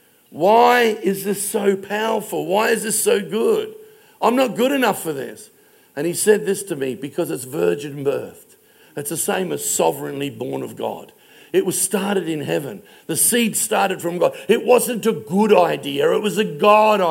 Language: English